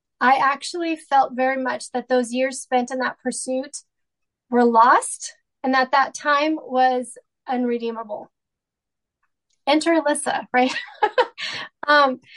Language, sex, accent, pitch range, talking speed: English, female, American, 245-280 Hz, 115 wpm